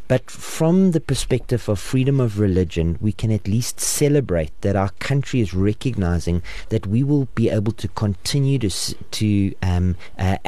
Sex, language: male, English